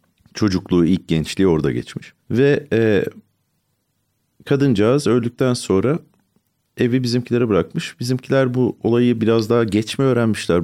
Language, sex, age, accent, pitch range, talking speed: Turkish, male, 40-59, native, 85-115 Hz, 115 wpm